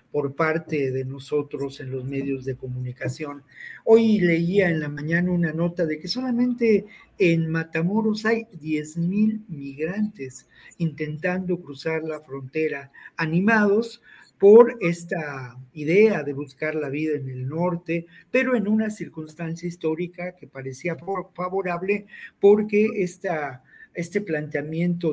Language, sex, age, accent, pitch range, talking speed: Spanish, male, 50-69, Mexican, 145-175 Hz, 120 wpm